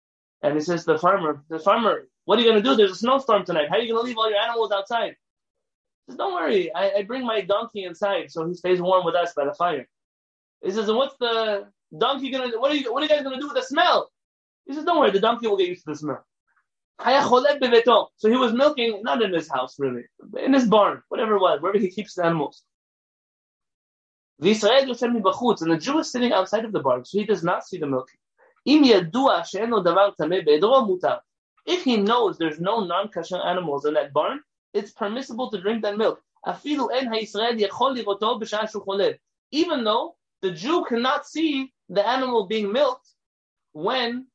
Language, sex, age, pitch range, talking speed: English, male, 20-39, 170-245 Hz, 195 wpm